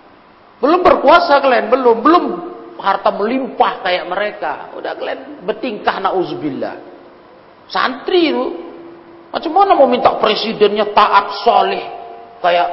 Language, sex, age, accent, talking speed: Indonesian, male, 40-59, native, 110 wpm